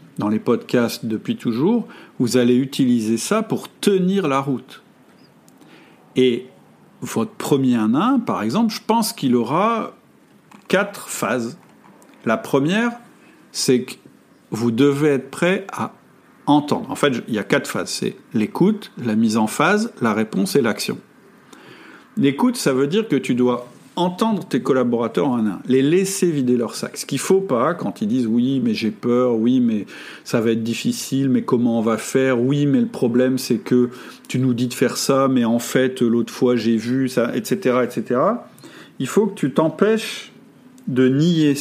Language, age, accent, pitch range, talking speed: French, 50-69, French, 120-175 Hz, 180 wpm